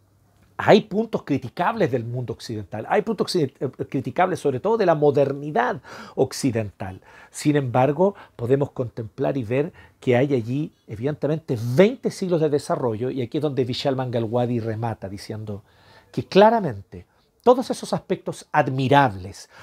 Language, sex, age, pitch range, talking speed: Spanish, male, 50-69, 120-185 Hz, 130 wpm